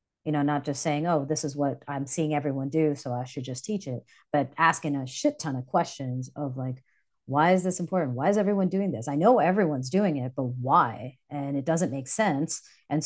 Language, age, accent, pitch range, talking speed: English, 30-49, American, 140-170 Hz, 230 wpm